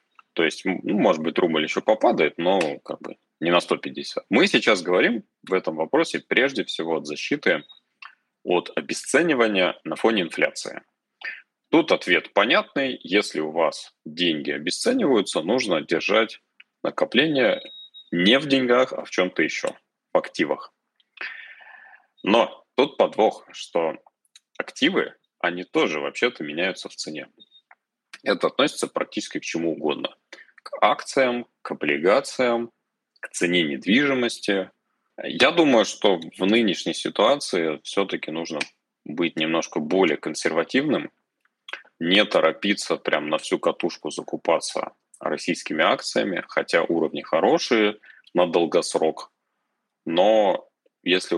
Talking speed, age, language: 120 wpm, 30-49, Russian